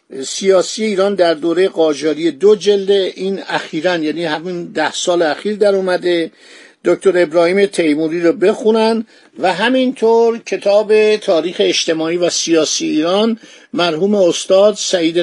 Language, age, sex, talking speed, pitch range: Persian, 50-69, male, 125 wpm, 170-210 Hz